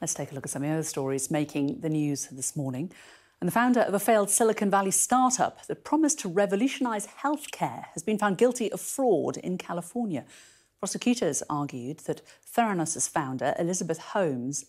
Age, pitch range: 50-69, 145-195 Hz